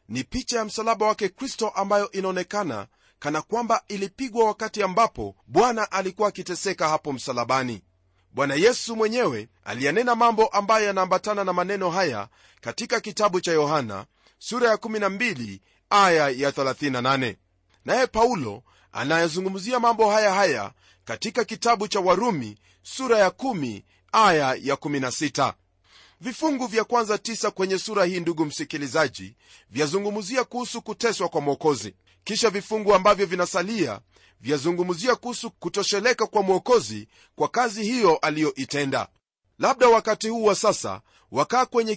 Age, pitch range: 40-59, 140-225 Hz